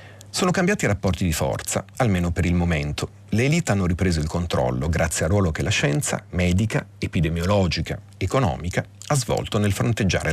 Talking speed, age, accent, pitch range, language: 170 wpm, 40-59, native, 85-115 Hz, Italian